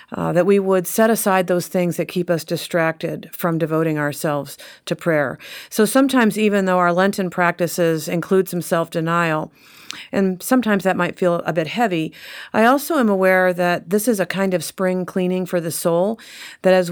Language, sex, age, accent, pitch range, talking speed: English, female, 40-59, American, 160-185 Hz, 185 wpm